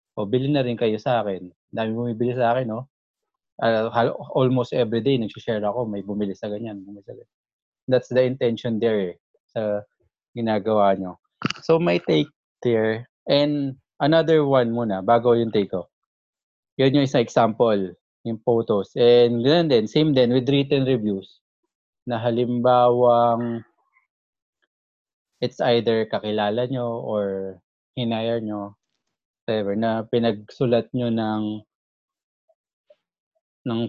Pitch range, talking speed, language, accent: 105-125 Hz, 110 wpm, English, Filipino